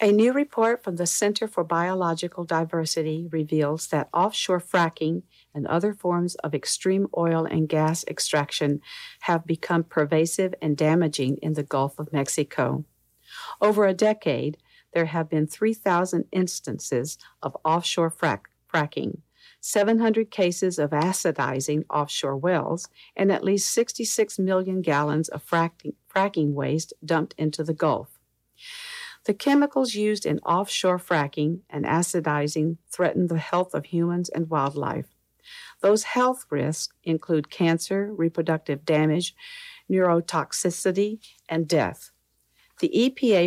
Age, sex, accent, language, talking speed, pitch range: 50-69, female, American, English, 125 wpm, 155-195 Hz